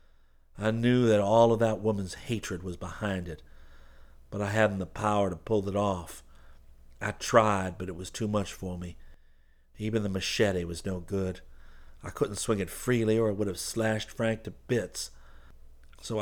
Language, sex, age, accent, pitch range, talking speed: English, male, 50-69, American, 65-110 Hz, 180 wpm